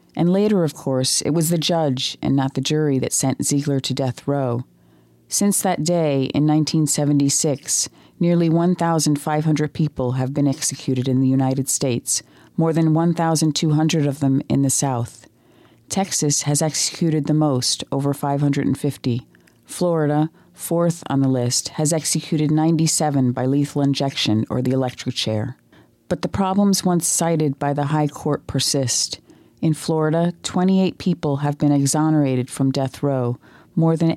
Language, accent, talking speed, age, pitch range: English, American, 150 wpm, 40-59, 135-165 Hz